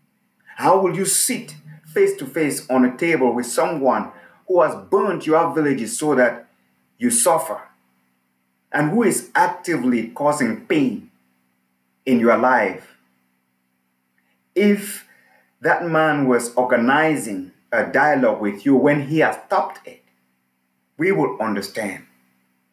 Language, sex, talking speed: English, male, 125 wpm